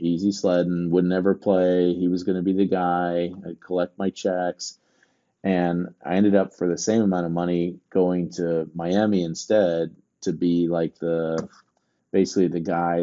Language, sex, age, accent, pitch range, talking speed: English, male, 30-49, American, 85-95 Hz, 165 wpm